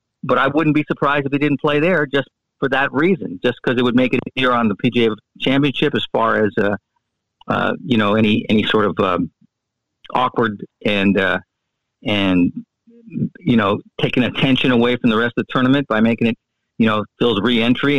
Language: English